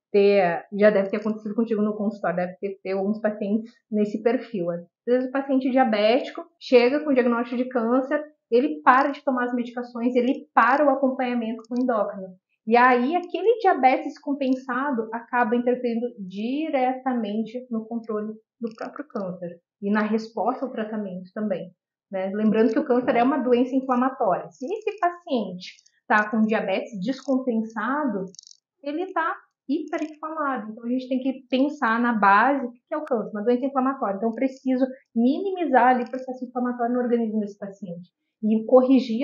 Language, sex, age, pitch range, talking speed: Portuguese, female, 30-49, 215-265 Hz, 160 wpm